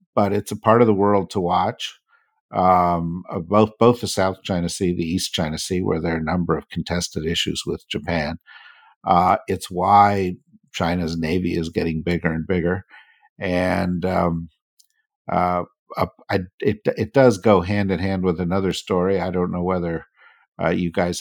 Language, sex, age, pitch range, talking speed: English, male, 50-69, 85-105 Hz, 175 wpm